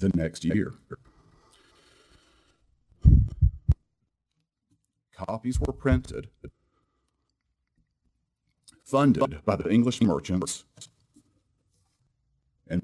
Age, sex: 40-59, male